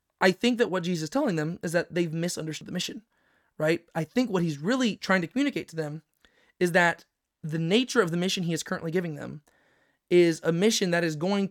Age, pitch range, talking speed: 20-39, 165-210 Hz, 225 wpm